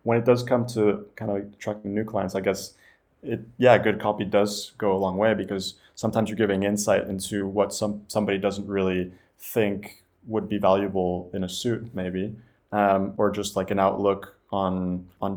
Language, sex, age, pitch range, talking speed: English, male, 20-39, 100-115 Hz, 190 wpm